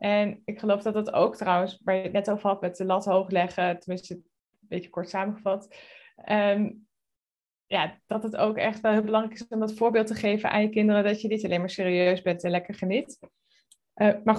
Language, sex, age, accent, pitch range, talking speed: Dutch, female, 20-39, Dutch, 200-235 Hz, 215 wpm